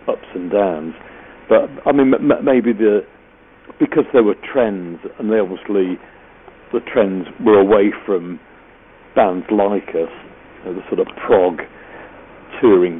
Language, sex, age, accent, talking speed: English, male, 50-69, British, 145 wpm